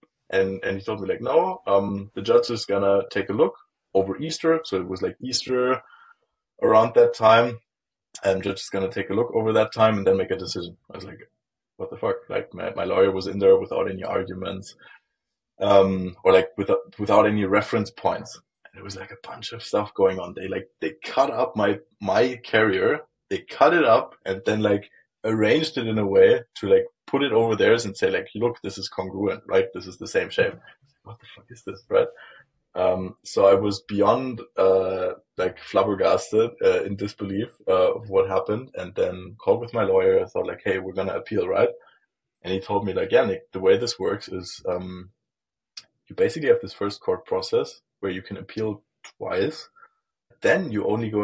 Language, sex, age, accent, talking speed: English, male, 20-39, German, 210 wpm